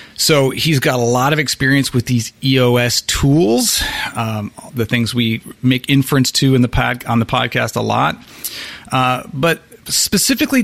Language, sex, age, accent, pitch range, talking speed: English, male, 30-49, American, 115-155 Hz, 165 wpm